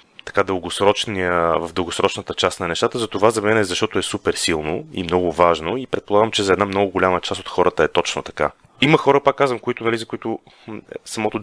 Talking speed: 210 wpm